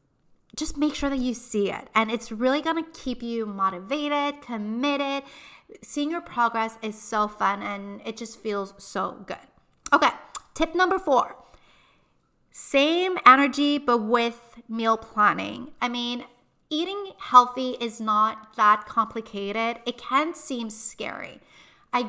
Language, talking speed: English, 140 wpm